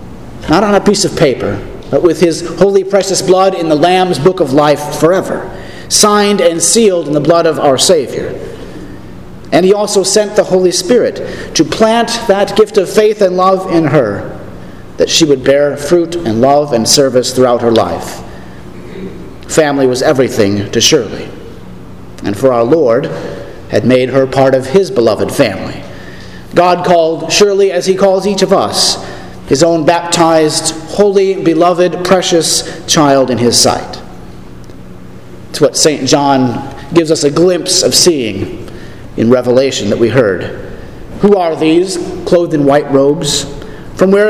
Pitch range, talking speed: 145-185 Hz, 160 wpm